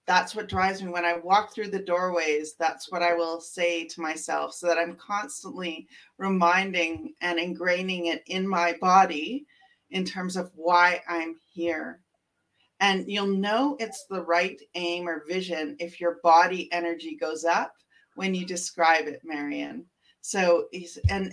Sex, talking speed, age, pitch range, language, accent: female, 155 wpm, 30-49, 170-220 Hz, English, American